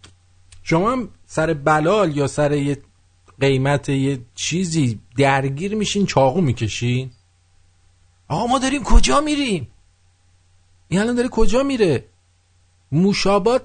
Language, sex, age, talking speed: English, male, 50-69, 105 wpm